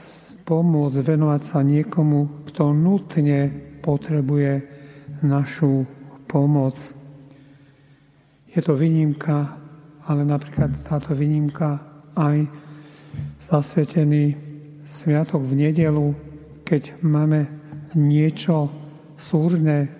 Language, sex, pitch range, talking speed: Slovak, male, 145-155 Hz, 70 wpm